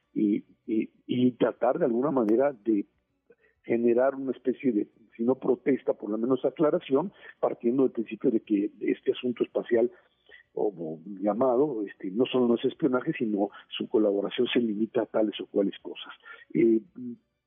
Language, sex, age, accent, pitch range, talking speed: Spanish, male, 50-69, Mexican, 115-185 Hz, 155 wpm